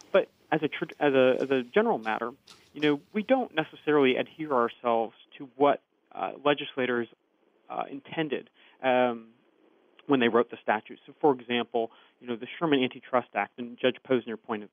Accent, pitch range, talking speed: American, 120-140 Hz, 155 wpm